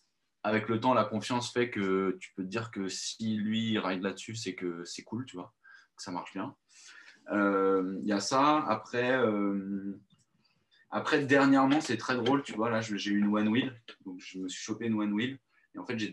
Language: French